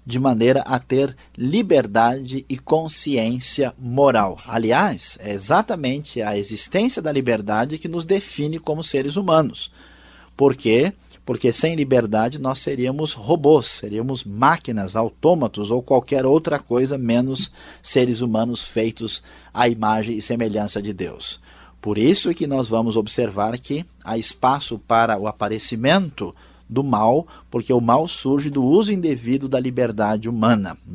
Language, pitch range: Portuguese, 110-140 Hz